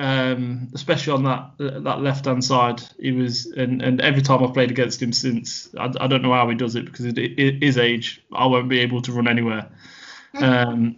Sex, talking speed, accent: male, 225 wpm, British